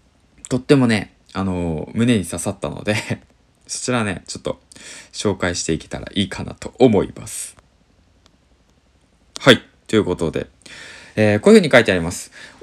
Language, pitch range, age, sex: Japanese, 90-150 Hz, 20-39, male